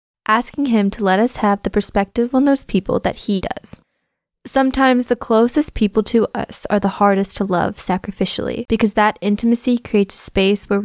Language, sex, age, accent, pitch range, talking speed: English, female, 20-39, American, 200-230 Hz, 185 wpm